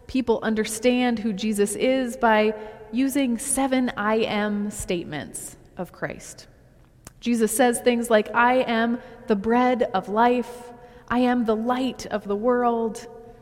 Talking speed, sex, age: 135 wpm, female, 30-49